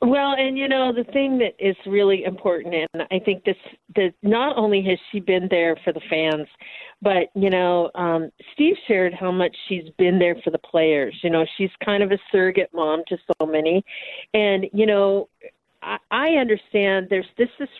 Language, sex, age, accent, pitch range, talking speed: English, female, 50-69, American, 180-220 Hz, 195 wpm